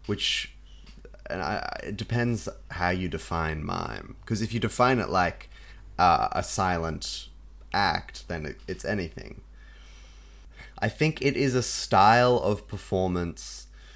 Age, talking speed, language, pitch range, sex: 20-39, 135 wpm, English, 85-105 Hz, male